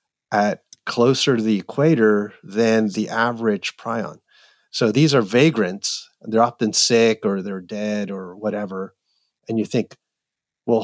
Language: English